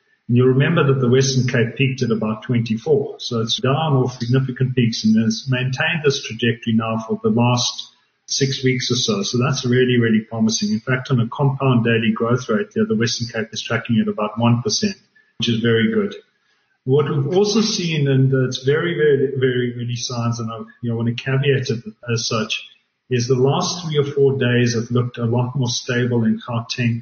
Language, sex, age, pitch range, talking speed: English, male, 40-59, 115-140 Hz, 200 wpm